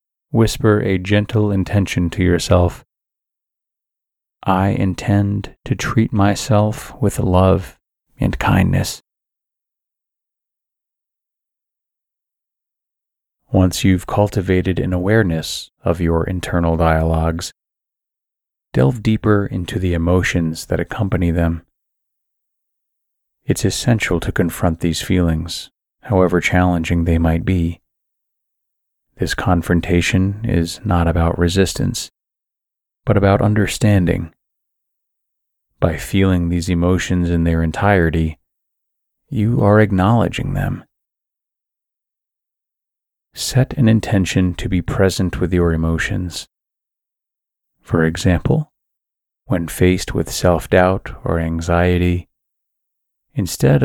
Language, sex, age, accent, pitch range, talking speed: English, male, 30-49, American, 85-100 Hz, 90 wpm